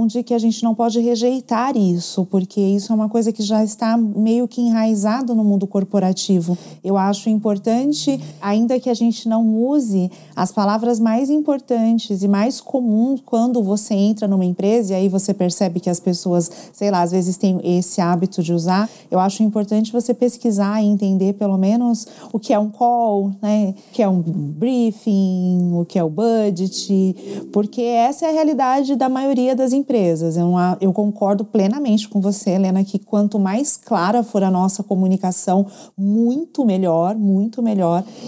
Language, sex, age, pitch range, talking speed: Portuguese, female, 30-49, 195-250 Hz, 175 wpm